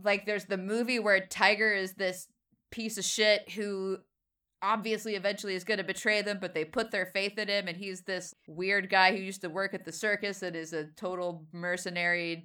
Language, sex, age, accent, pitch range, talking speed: English, female, 20-39, American, 170-205 Hz, 205 wpm